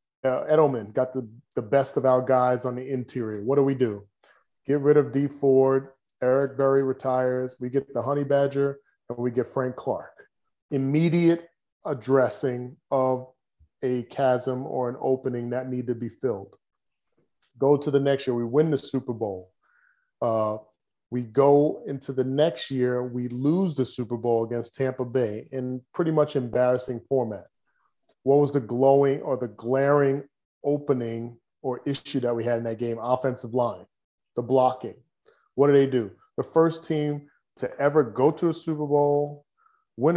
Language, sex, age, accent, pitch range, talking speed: English, male, 30-49, American, 125-145 Hz, 165 wpm